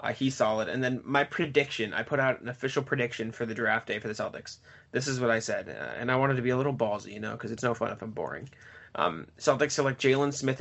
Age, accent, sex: 20-39, American, male